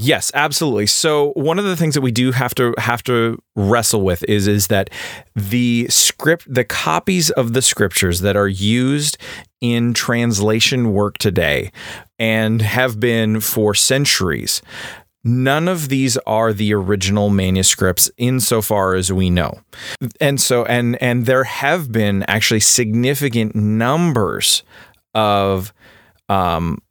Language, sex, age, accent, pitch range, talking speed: English, male, 30-49, American, 100-125 Hz, 140 wpm